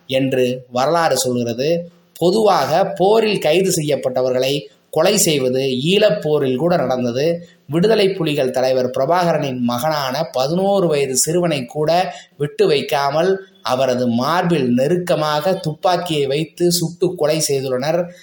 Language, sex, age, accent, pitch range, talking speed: Tamil, male, 20-39, native, 130-175 Hz, 100 wpm